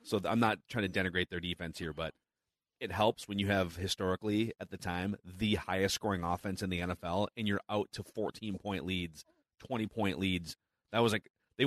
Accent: American